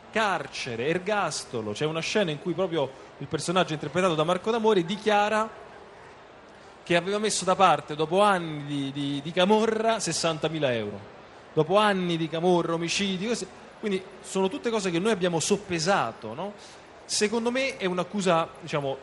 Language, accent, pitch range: Italian, native, 155-210 Hz